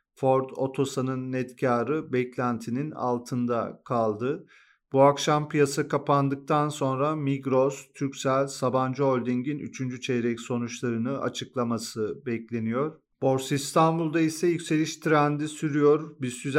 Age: 40-59